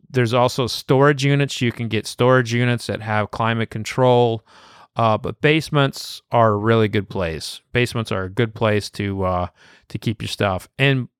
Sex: male